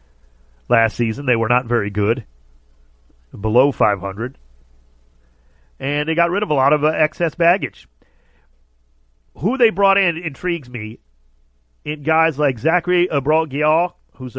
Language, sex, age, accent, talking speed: English, male, 40-59, American, 140 wpm